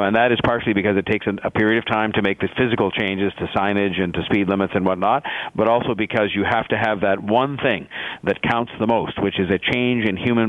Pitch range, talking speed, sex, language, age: 100-115 Hz, 250 wpm, male, English, 50-69